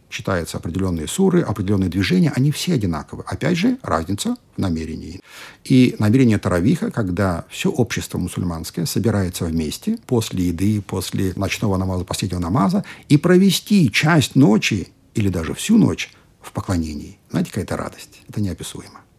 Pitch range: 95-140 Hz